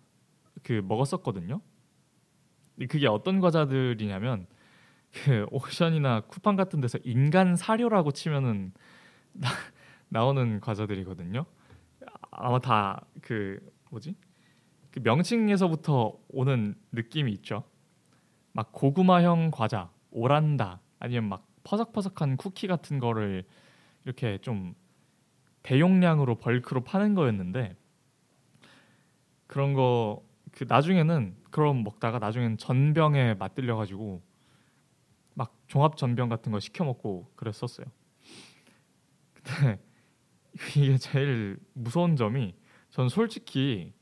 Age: 20-39